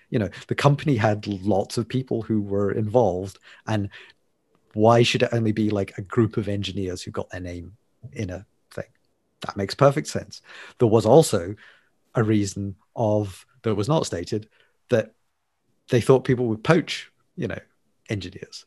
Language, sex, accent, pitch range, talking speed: English, male, British, 100-125 Hz, 165 wpm